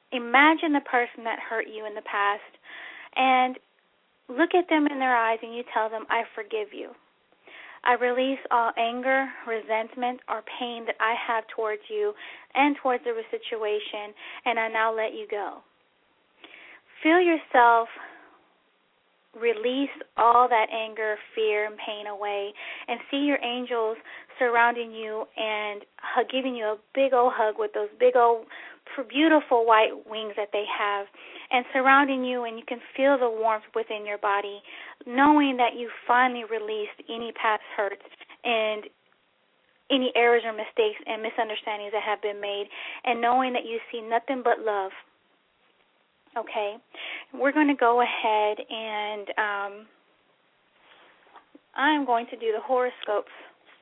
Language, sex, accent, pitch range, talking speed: English, female, American, 220-260 Hz, 145 wpm